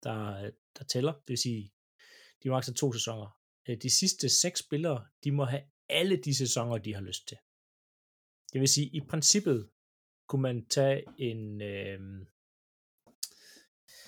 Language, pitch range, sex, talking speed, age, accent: Danish, 110-145 Hz, male, 150 wpm, 30-49, native